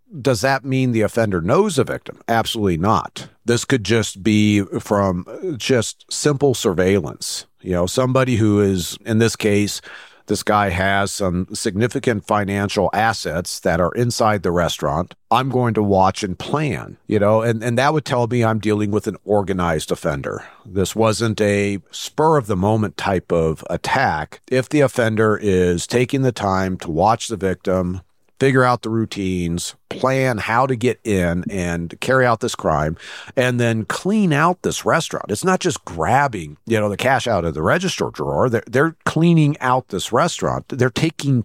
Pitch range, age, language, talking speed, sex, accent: 100-130 Hz, 50-69, English, 170 wpm, male, American